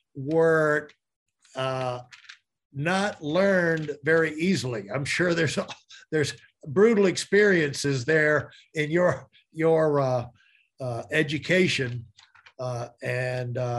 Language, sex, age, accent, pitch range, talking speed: English, male, 60-79, American, 130-170 Hz, 95 wpm